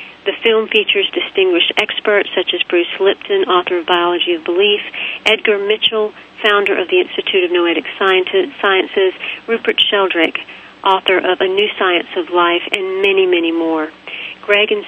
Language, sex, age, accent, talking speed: English, female, 40-59, American, 155 wpm